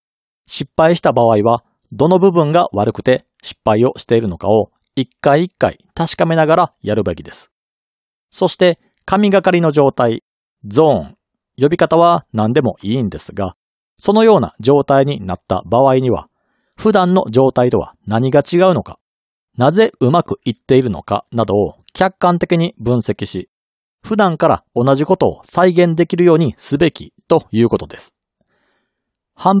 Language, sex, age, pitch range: Japanese, male, 40-59, 115-180 Hz